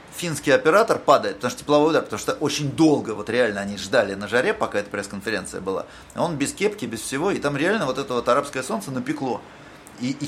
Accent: native